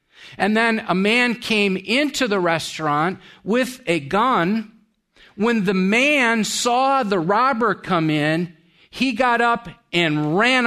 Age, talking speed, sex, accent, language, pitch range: 50-69, 135 wpm, male, American, English, 180-245 Hz